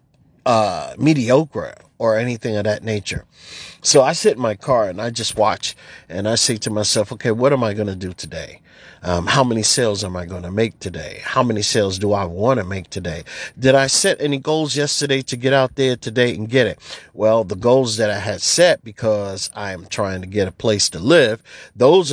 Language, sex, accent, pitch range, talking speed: English, male, American, 105-130 Hz, 215 wpm